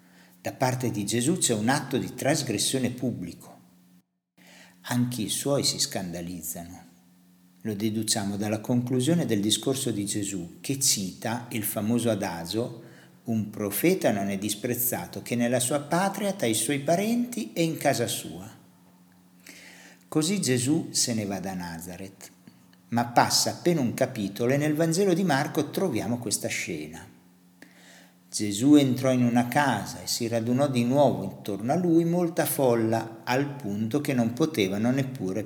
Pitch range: 95-140 Hz